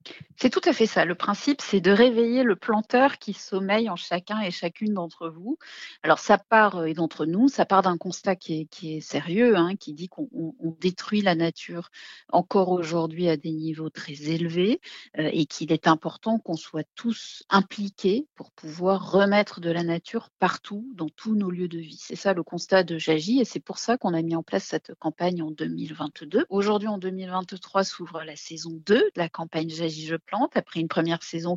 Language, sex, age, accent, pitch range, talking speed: French, female, 40-59, French, 165-210 Hz, 205 wpm